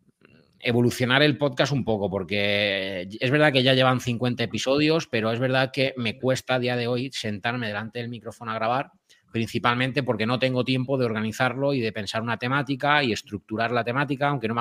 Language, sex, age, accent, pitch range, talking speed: Spanish, male, 30-49, Spanish, 110-135 Hz, 195 wpm